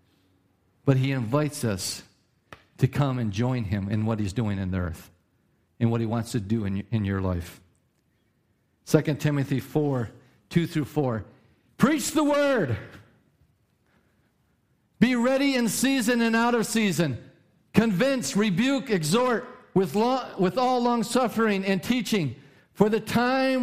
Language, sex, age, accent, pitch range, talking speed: English, male, 50-69, American, 135-215 Hz, 140 wpm